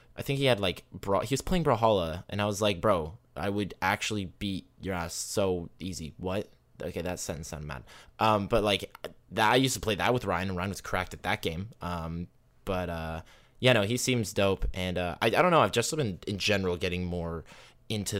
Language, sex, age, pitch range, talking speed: English, male, 20-39, 90-120 Hz, 230 wpm